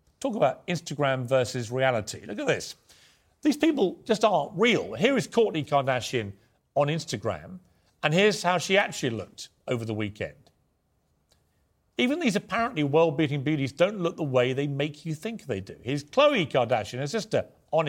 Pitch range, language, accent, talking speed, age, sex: 125-180 Hz, English, British, 165 wpm, 40-59, male